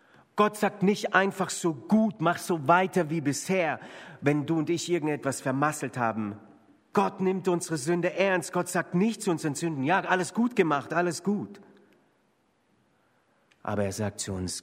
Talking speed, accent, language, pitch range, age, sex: 165 wpm, German, German, 115-165 Hz, 40-59, male